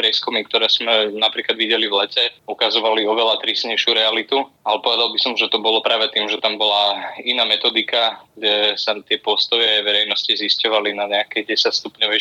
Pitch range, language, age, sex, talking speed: 105-115 Hz, Slovak, 20-39, male, 160 wpm